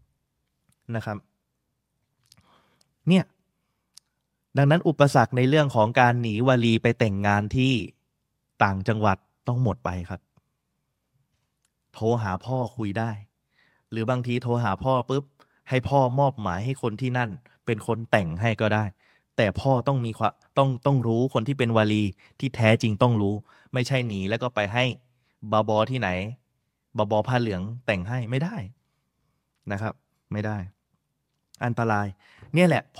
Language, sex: Thai, male